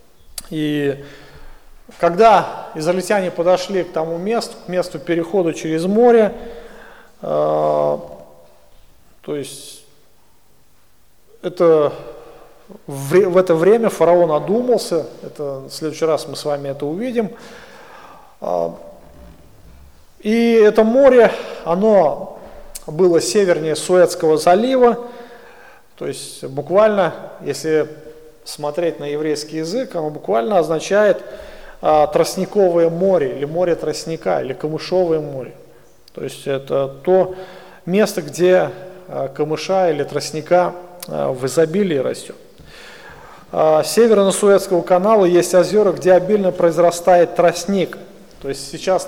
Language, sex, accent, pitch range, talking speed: Russian, male, native, 150-190 Hz, 95 wpm